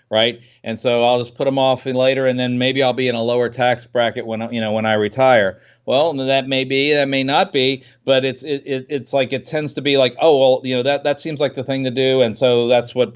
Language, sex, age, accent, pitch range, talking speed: English, male, 40-59, American, 115-130 Hz, 275 wpm